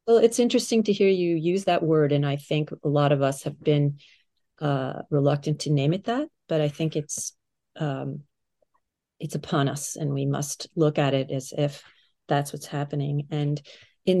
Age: 40-59